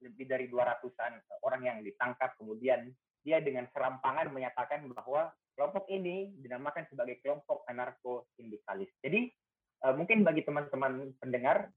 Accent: native